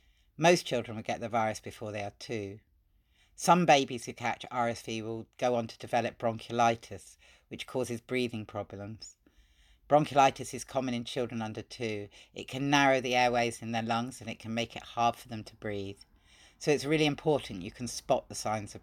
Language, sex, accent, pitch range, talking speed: English, female, British, 105-130 Hz, 190 wpm